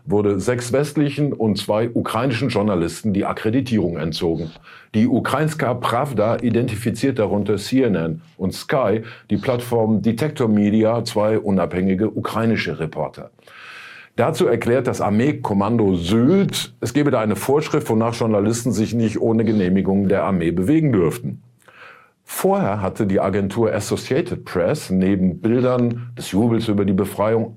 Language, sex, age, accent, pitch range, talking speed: German, male, 50-69, German, 100-130 Hz, 130 wpm